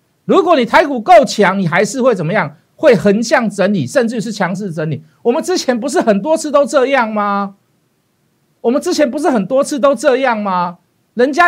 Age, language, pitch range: 50-69, Chinese, 195-290 Hz